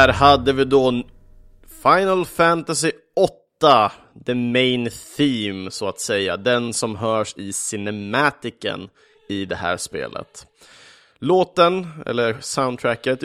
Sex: male